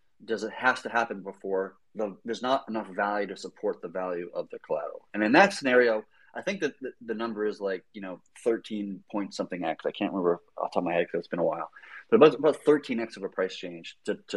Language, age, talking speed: English, 30-49, 250 wpm